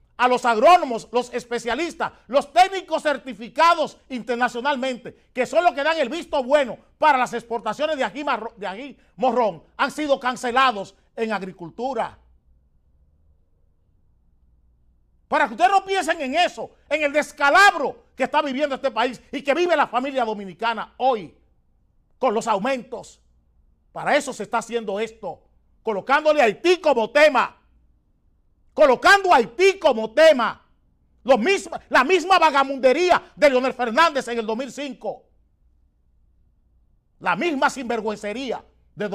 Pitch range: 185-280 Hz